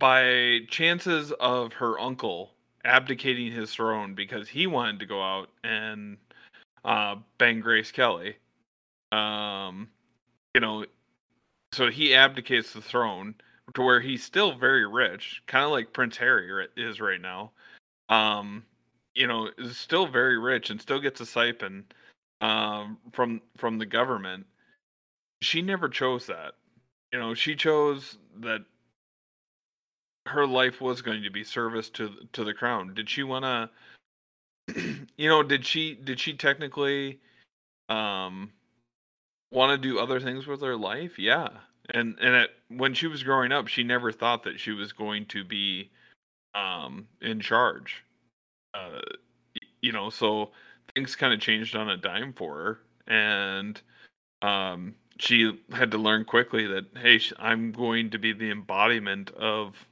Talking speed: 150 wpm